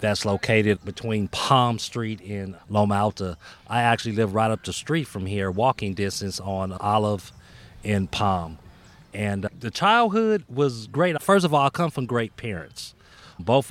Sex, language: male, English